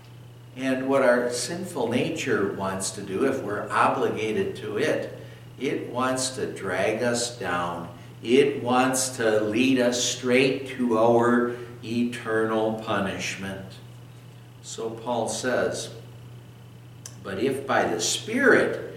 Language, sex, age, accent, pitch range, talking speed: English, male, 60-79, American, 115-130 Hz, 115 wpm